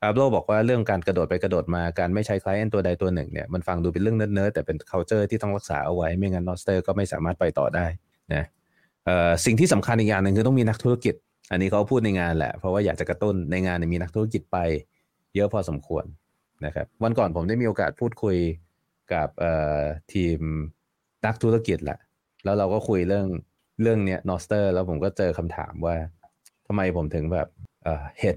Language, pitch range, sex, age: Thai, 85-110 Hz, male, 30-49